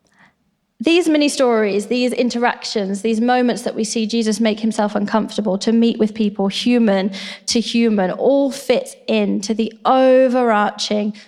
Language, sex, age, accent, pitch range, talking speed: English, female, 20-39, British, 210-245 Hz, 140 wpm